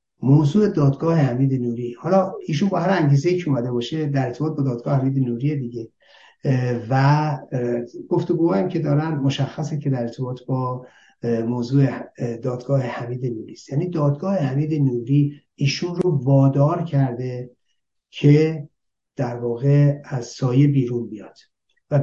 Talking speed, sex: 135 wpm, male